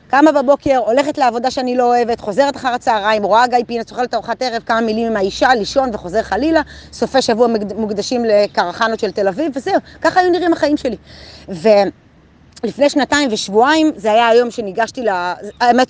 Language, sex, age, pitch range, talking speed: Hebrew, female, 30-49, 210-275 Hz, 175 wpm